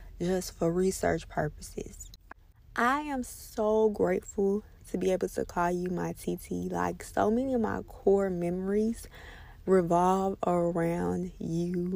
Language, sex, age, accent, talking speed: English, female, 20-39, American, 130 wpm